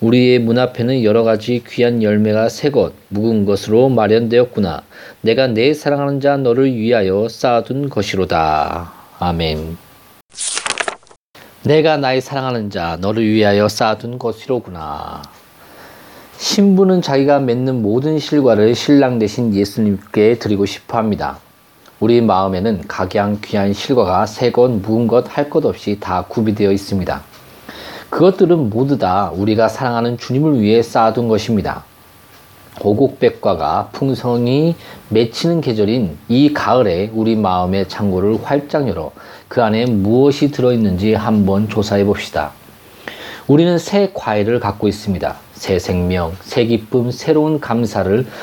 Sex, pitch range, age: male, 105-130 Hz, 40-59